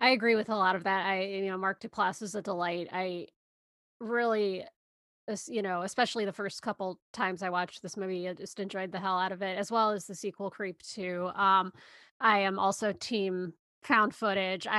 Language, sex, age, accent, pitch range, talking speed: English, female, 20-39, American, 195-230 Hz, 205 wpm